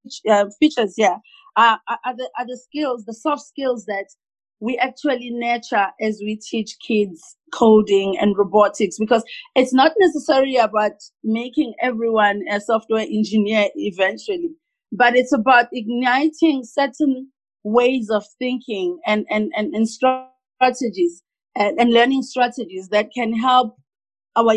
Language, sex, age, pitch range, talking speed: English, female, 30-49, 210-270 Hz, 130 wpm